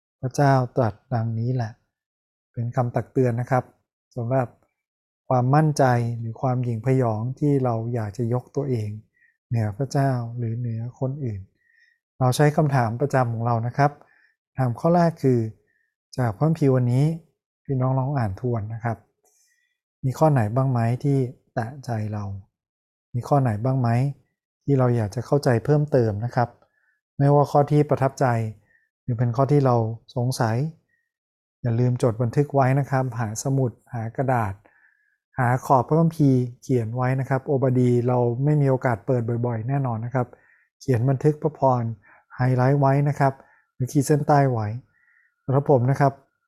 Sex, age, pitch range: male, 20-39, 120-140 Hz